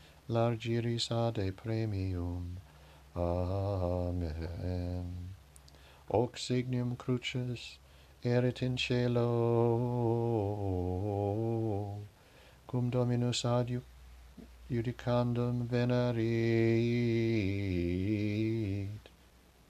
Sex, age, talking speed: male, 60-79, 45 wpm